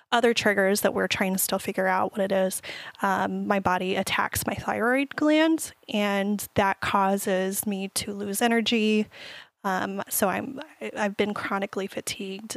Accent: American